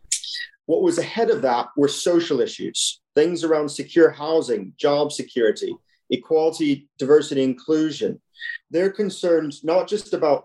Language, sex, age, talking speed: English, male, 30-49, 125 wpm